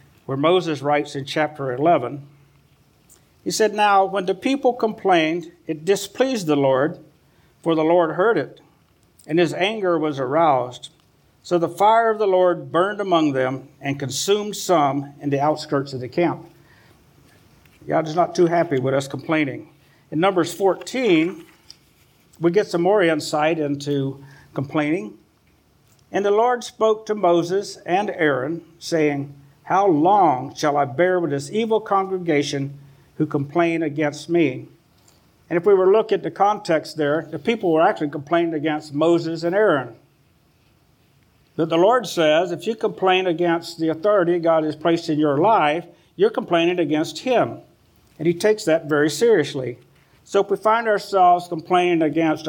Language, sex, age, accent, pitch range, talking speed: English, male, 60-79, American, 145-185 Hz, 155 wpm